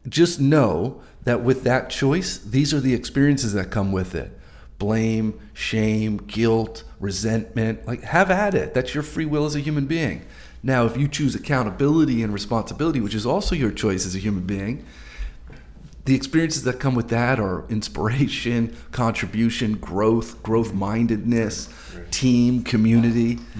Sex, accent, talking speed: male, American, 155 wpm